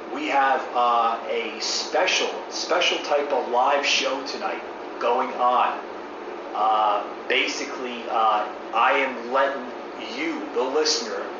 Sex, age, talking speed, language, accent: male, 30-49, 115 wpm, English, American